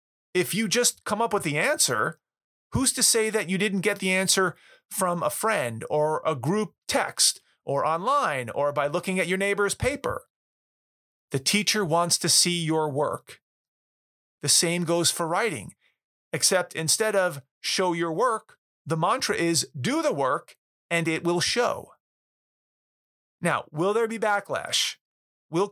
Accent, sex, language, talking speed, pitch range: American, male, English, 155 wpm, 150-200 Hz